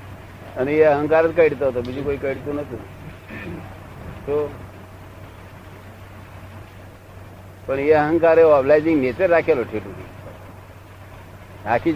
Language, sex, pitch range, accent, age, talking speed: Gujarati, male, 95-135 Hz, native, 60-79, 80 wpm